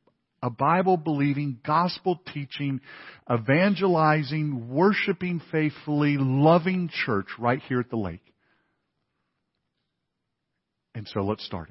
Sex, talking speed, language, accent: male, 85 wpm, English, American